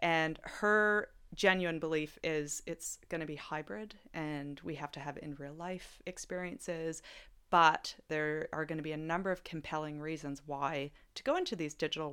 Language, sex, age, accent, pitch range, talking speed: English, female, 30-49, American, 150-195 Hz, 180 wpm